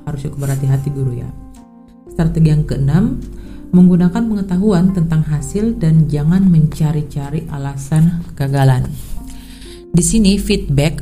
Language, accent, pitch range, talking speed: Indonesian, native, 140-170 Hz, 105 wpm